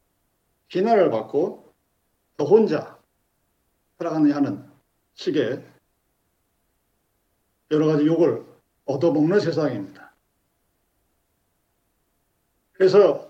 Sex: male